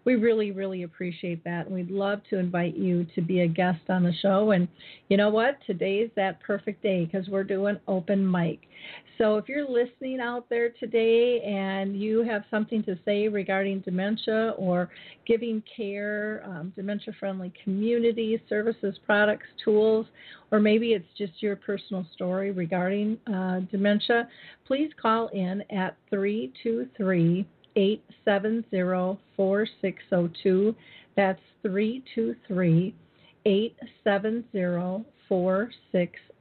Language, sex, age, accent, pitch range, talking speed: English, female, 40-59, American, 185-215 Hz, 125 wpm